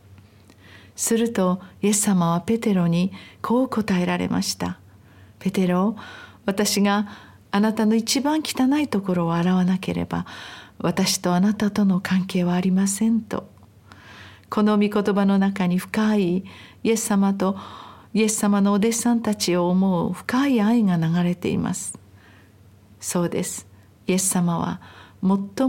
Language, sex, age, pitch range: Japanese, female, 50-69, 170-210 Hz